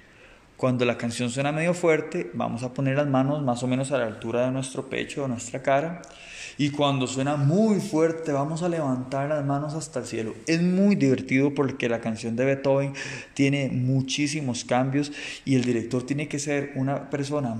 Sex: male